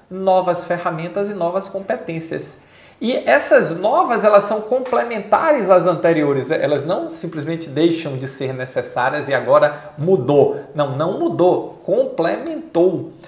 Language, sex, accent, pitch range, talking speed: Portuguese, male, Brazilian, 170-225 Hz, 120 wpm